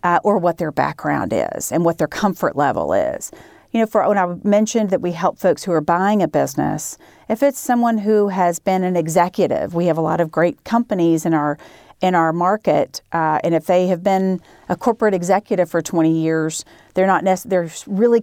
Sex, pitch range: female, 160-205 Hz